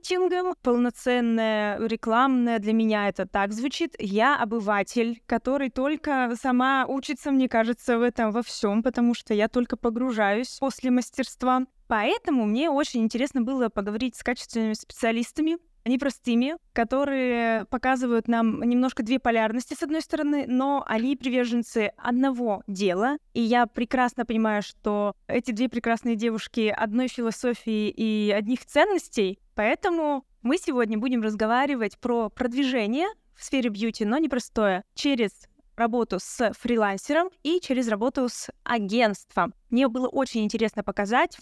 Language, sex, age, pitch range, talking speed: Russian, female, 20-39, 225-275 Hz, 130 wpm